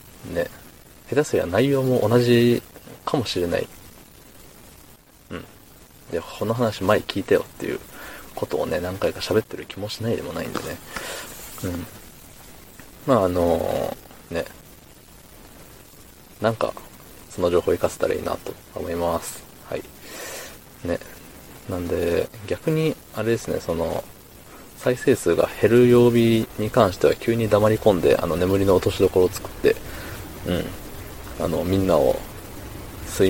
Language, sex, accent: Japanese, male, native